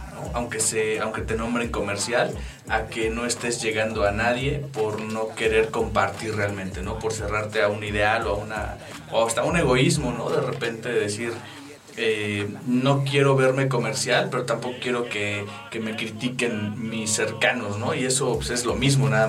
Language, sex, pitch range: Spanish, male, 105-125 Hz